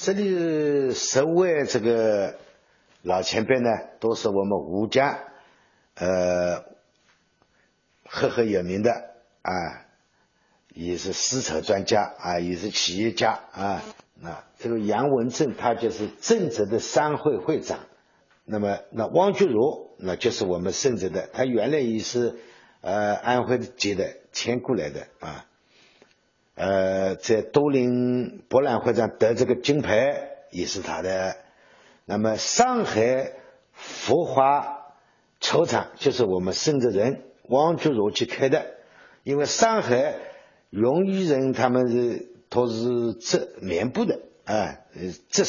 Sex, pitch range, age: male, 105-145 Hz, 50-69